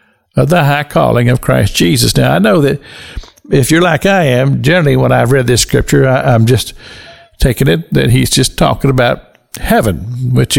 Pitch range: 120-150 Hz